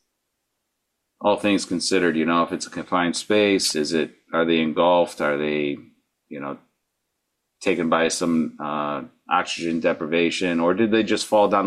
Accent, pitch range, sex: American, 80-95 Hz, male